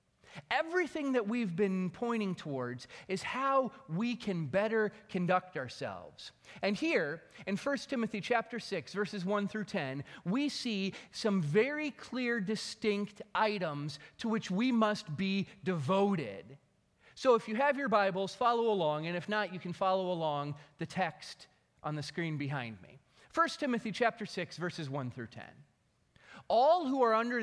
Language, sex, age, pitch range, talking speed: English, male, 30-49, 165-235 Hz, 155 wpm